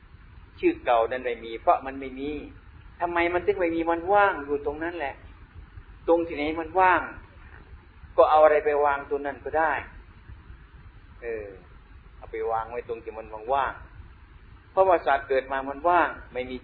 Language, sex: Thai, male